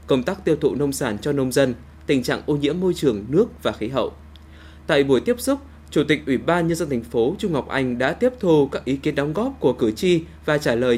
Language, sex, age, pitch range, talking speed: Vietnamese, male, 20-39, 115-160 Hz, 260 wpm